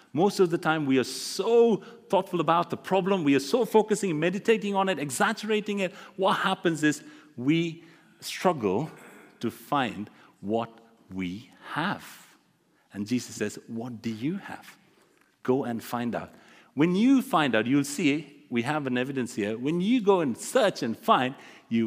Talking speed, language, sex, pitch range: 165 wpm, English, male, 115-175 Hz